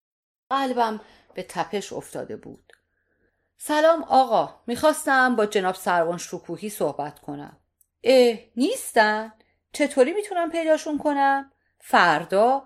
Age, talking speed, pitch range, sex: 40-59, 100 wpm, 185-285 Hz, female